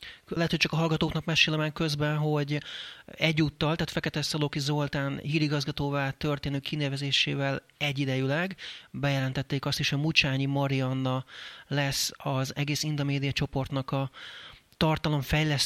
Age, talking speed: 30-49, 120 wpm